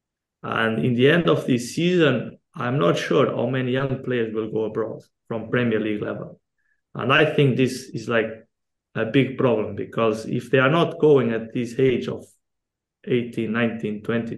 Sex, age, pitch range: male, 20-39, 110-130 Hz